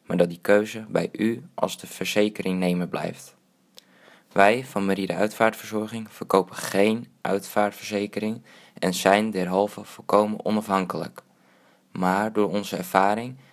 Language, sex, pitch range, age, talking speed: Dutch, male, 95-110 Hz, 20-39, 120 wpm